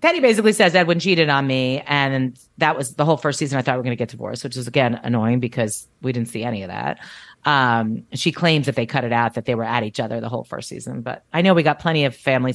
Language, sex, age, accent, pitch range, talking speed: English, female, 30-49, American, 130-180 Hz, 280 wpm